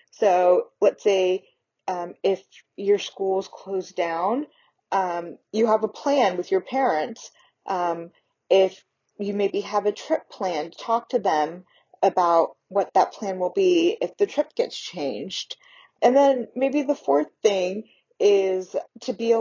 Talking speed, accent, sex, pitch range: 150 wpm, American, female, 185-235 Hz